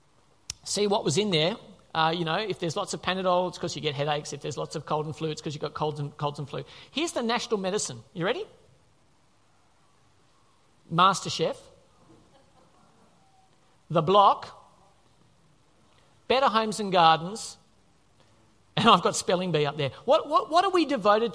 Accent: Australian